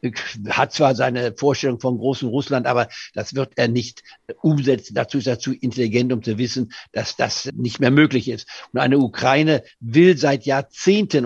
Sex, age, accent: male, 60-79, German